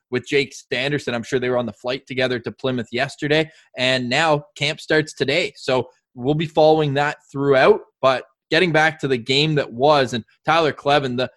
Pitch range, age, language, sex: 130-155 Hz, 20-39, English, male